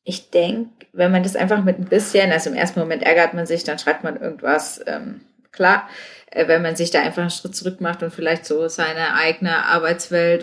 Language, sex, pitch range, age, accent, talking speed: German, female, 160-190 Hz, 30-49, German, 220 wpm